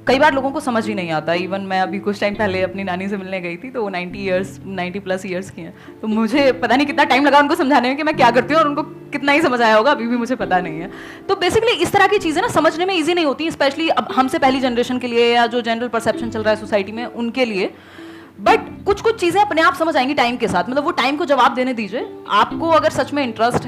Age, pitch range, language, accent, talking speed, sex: 20-39, 225-300 Hz, Hindi, native, 275 wpm, female